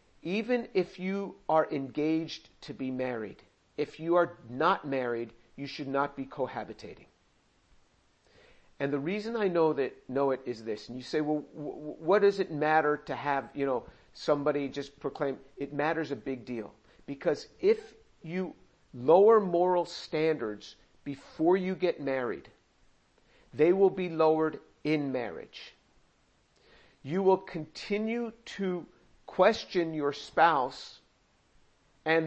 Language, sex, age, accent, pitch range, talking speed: English, male, 50-69, American, 140-175 Hz, 135 wpm